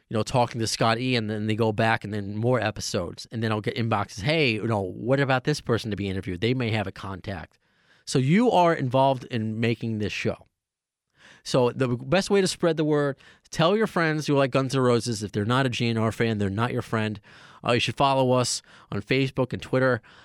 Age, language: 30-49, English